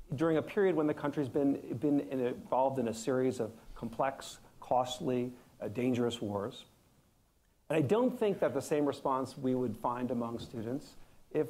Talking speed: 165 wpm